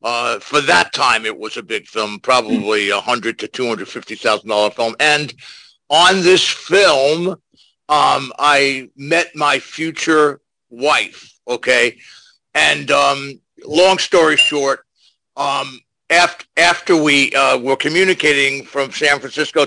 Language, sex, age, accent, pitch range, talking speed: English, male, 60-79, American, 120-165 Hz, 125 wpm